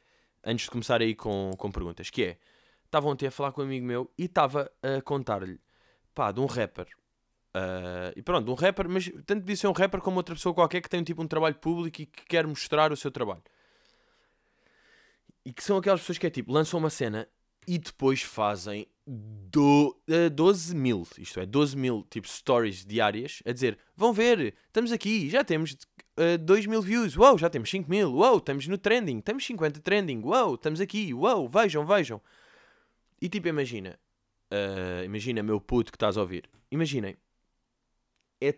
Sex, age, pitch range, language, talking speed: male, 20-39, 125-205 Hz, Portuguese, 190 wpm